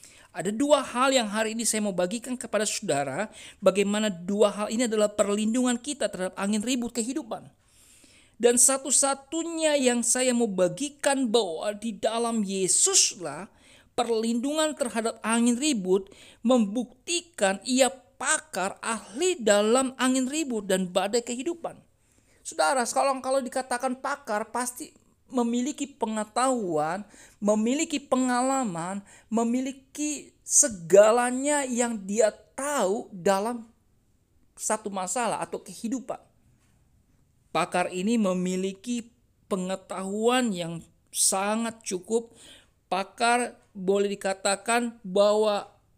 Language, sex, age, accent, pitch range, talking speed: Indonesian, male, 50-69, native, 195-255 Hz, 100 wpm